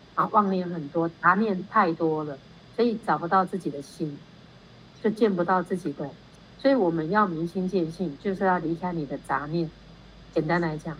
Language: Chinese